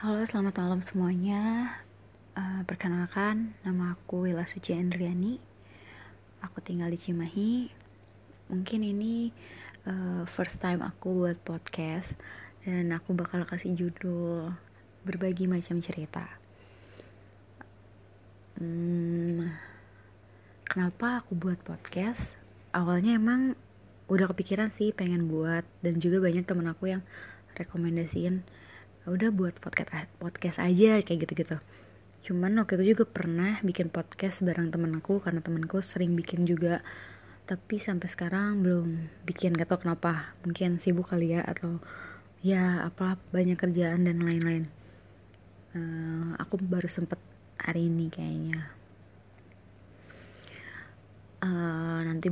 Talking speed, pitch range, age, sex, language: 115 wpm, 155-185 Hz, 20-39, female, Indonesian